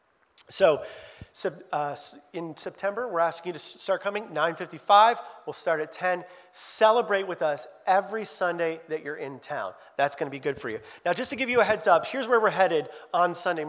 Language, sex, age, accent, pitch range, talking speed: English, male, 40-59, American, 155-200 Hz, 195 wpm